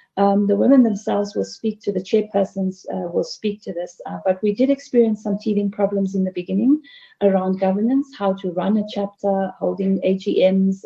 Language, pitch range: English, 190-245 Hz